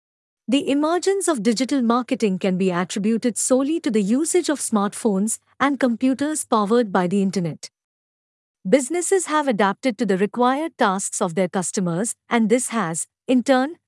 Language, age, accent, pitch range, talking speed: English, 50-69, Indian, 195-280 Hz, 150 wpm